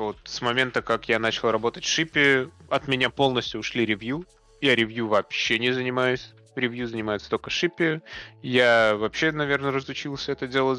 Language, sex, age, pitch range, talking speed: Russian, male, 20-39, 110-140 Hz, 160 wpm